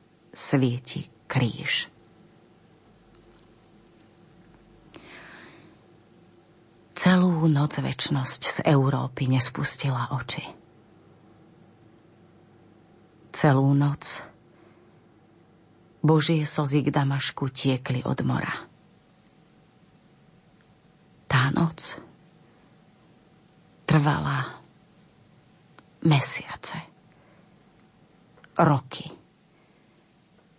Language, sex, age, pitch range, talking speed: Slovak, female, 40-59, 140-160 Hz, 45 wpm